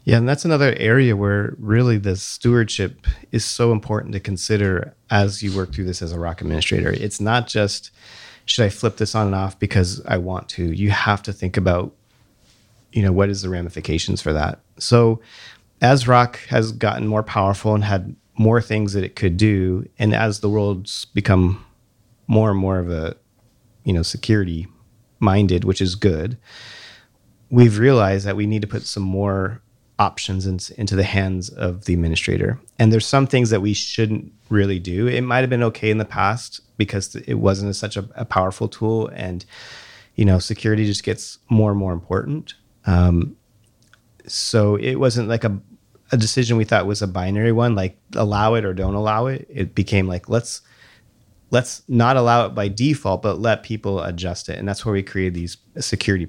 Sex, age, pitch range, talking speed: male, 30-49, 95-115 Hz, 190 wpm